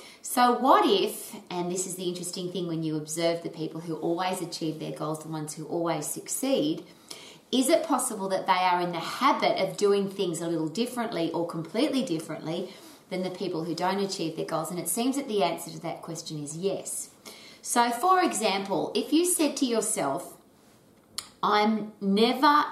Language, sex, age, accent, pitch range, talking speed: English, female, 30-49, Australian, 170-225 Hz, 190 wpm